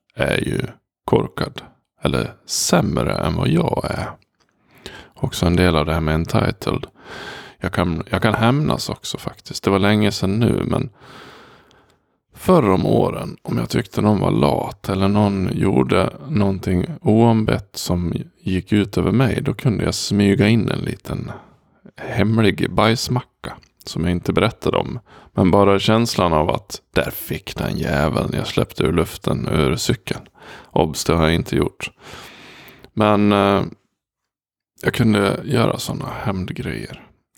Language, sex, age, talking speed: Swedish, male, 20-39, 145 wpm